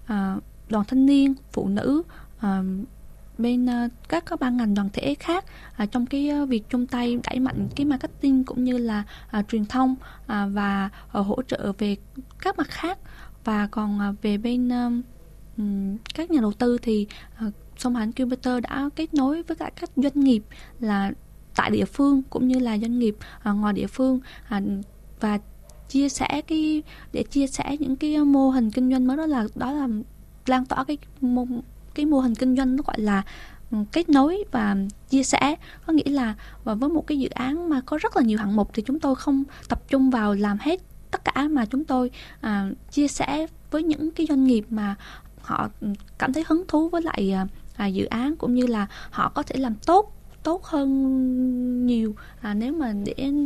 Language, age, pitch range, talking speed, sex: Vietnamese, 10-29, 215-280 Hz, 185 wpm, female